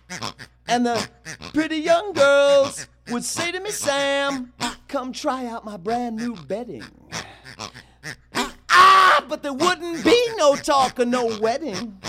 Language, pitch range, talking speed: German, 235-315 Hz, 135 wpm